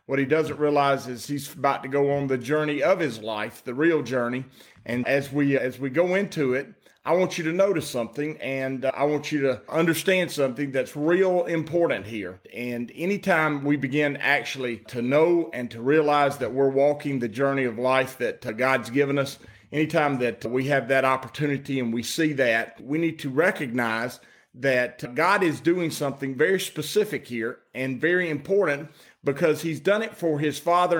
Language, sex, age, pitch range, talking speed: English, male, 40-59, 130-155 Hz, 185 wpm